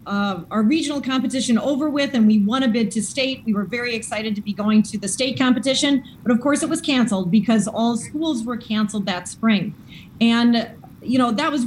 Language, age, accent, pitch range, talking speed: English, 30-49, American, 210-250 Hz, 215 wpm